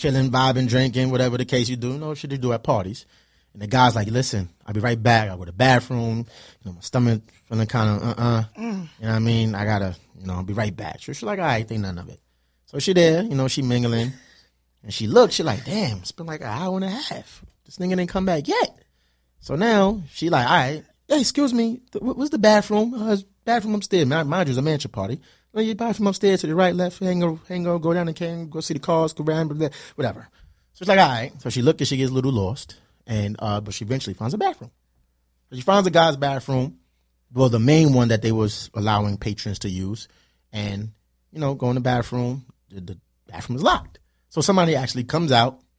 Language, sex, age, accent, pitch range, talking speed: English, male, 30-49, American, 105-160 Hz, 245 wpm